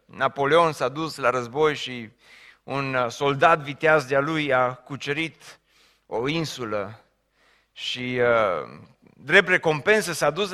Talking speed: 125 wpm